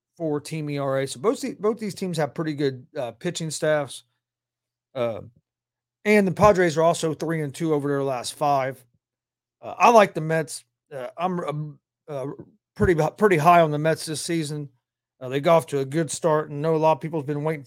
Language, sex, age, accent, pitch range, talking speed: English, male, 40-59, American, 120-165 Hz, 205 wpm